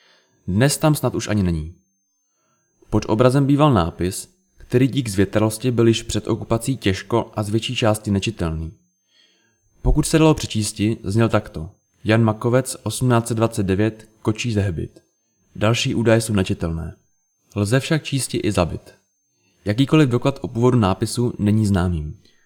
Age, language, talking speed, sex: 20-39, Czech, 135 wpm, male